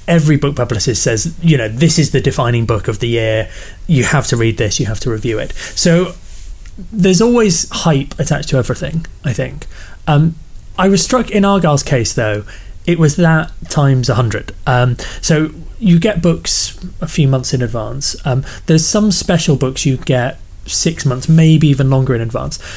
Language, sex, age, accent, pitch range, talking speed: English, male, 30-49, British, 115-155 Hz, 185 wpm